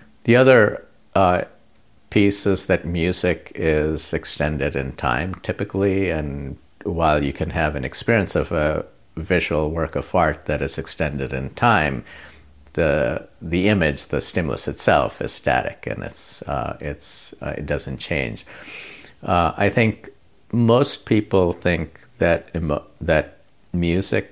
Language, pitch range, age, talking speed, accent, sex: English, 75-90 Hz, 50-69, 140 wpm, American, male